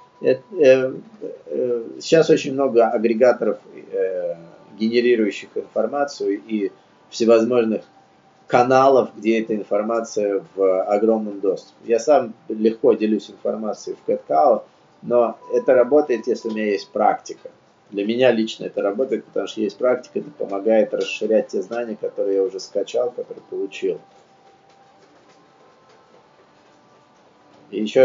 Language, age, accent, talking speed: Russian, 30-49, native, 110 wpm